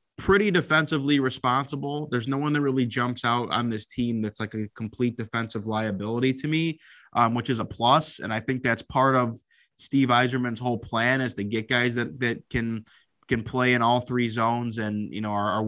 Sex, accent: male, American